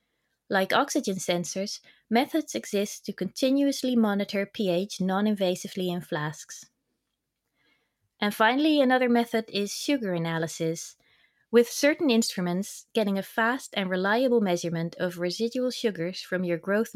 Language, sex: English, female